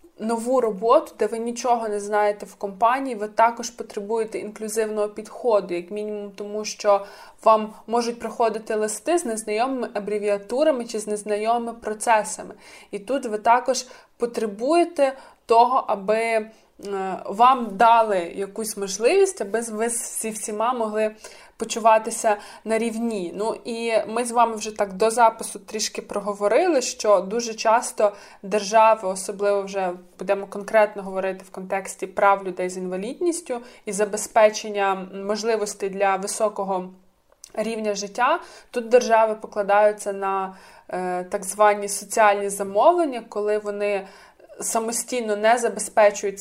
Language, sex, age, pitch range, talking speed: Ukrainian, female, 20-39, 205-230 Hz, 125 wpm